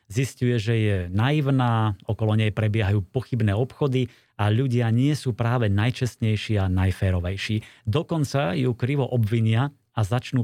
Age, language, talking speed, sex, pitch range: 30-49, Slovak, 130 wpm, male, 105-130 Hz